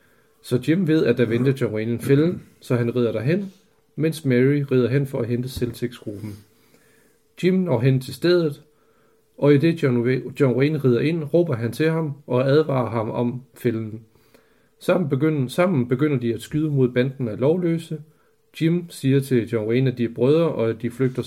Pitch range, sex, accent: 120-150 Hz, male, native